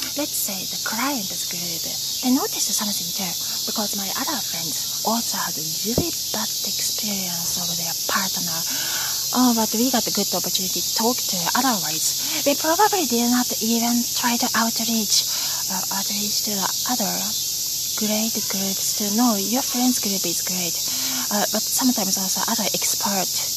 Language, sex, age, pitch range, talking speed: English, female, 20-39, 185-240 Hz, 155 wpm